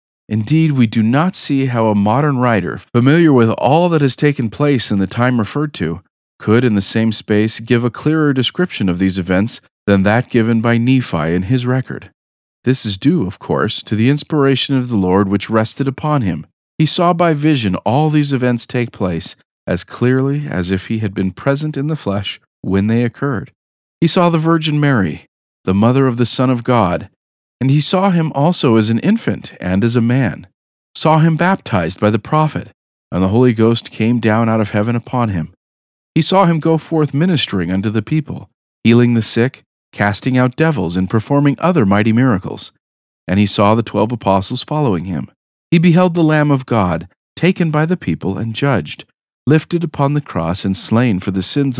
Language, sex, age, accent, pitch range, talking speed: English, male, 40-59, American, 105-145 Hz, 195 wpm